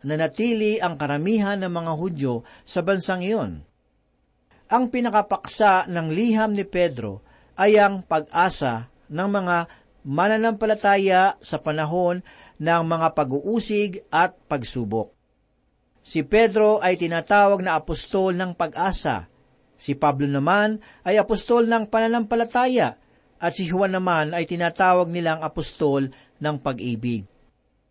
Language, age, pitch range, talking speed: Filipino, 50-69, 155-210 Hz, 115 wpm